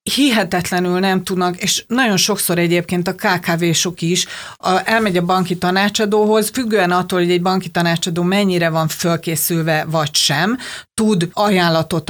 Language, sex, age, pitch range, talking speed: Hungarian, female, 40-59, 170-215 Hz, 135 wpm